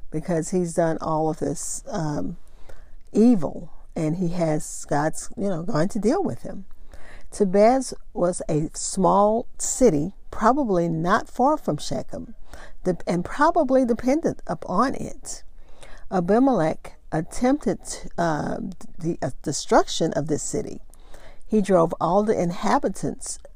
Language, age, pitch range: English, 50-69, 155-205 Hz